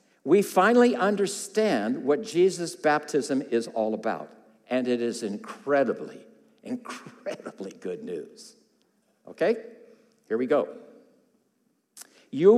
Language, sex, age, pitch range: English, male, 60-79, 150-235 Hz